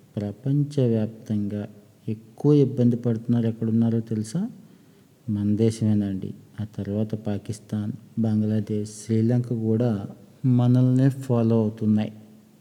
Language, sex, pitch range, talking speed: Telugu, male, 105-125 Hz, 80 wpm